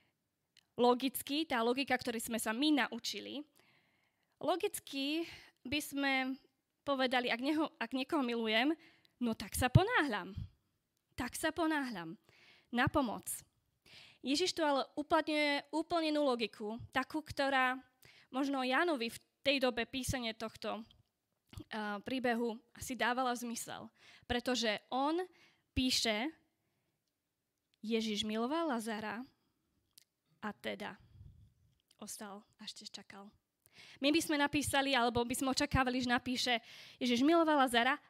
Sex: female